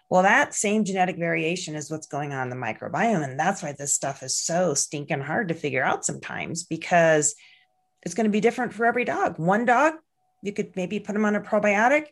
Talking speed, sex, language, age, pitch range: 220 wpm, female, English, 40-59, 155-205 Hz